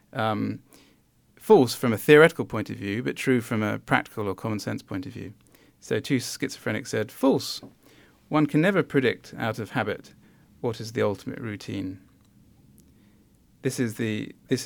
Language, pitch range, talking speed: English, 105-135 Hz, 165 wpm